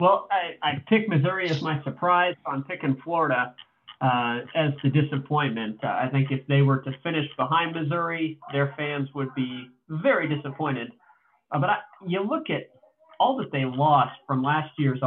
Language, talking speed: English, 175 wpm